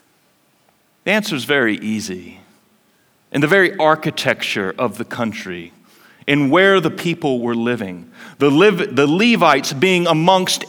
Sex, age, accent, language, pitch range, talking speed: male, 40-59, American, English, 175-225 Hz, 135 wpm